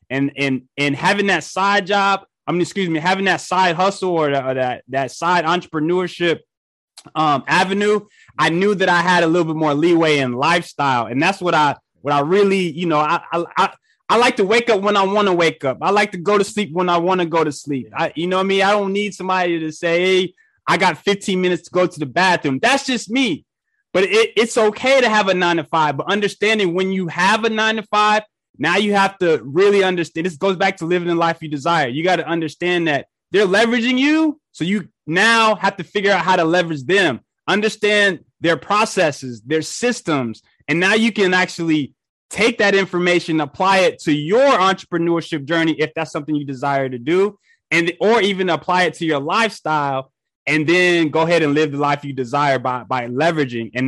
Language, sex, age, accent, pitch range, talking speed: English, male, 20-39, American, 155-200 Hz, 220 wpm